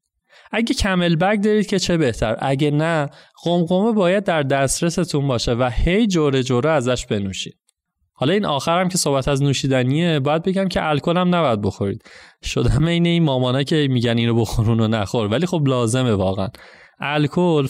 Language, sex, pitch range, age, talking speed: Persian, male, 125-180 Hz, 30-49, 165 wpm